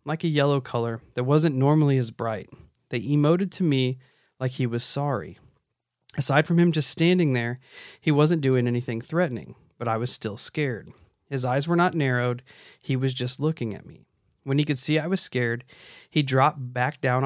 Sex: male